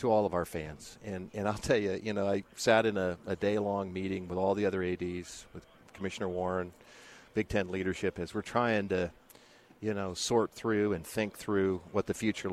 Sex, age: male, 40-59